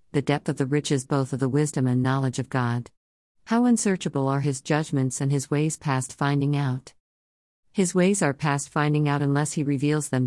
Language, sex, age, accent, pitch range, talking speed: English, female, 50-69, American, 130-155 Hz, 200 wpm